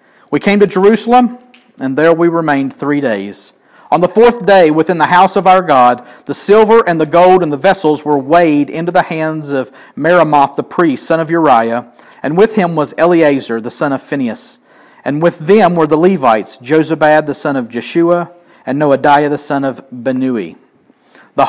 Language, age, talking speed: English, 40-59, 185 wpm